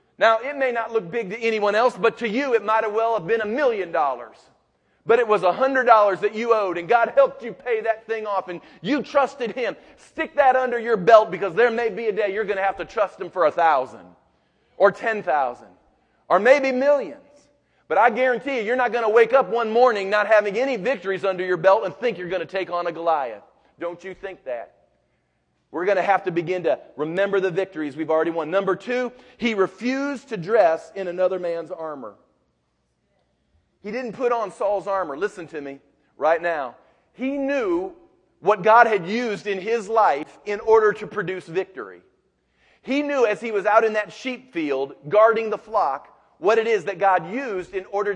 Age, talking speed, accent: 40-59, 210 wpm, American